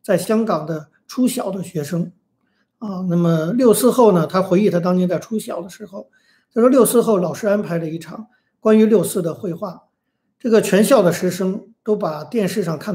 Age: 50-69